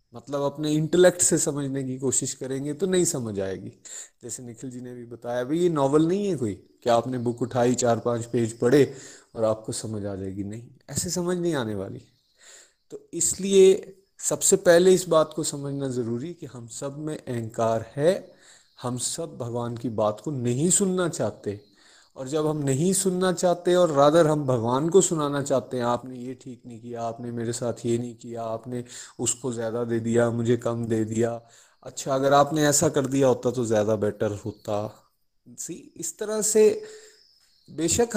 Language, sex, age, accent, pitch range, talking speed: Hindi, male, 30-49, native, 120-170 Hz, 185 wpm